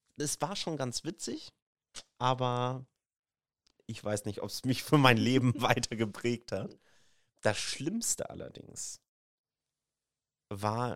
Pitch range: 95-125 Hz